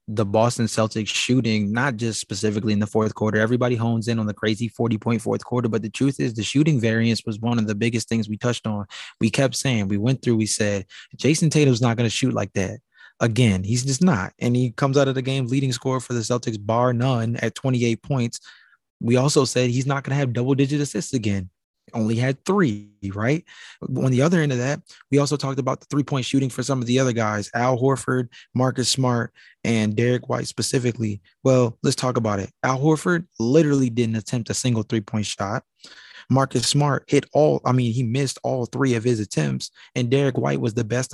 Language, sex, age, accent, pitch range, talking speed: English, male, 20-39, American, 110-135 Hz, 220 wpm